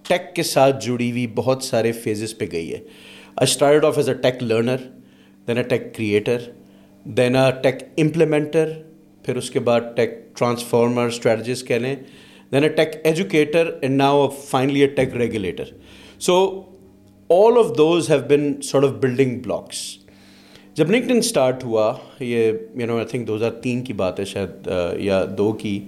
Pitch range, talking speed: 110-145 Hz, 110 wpm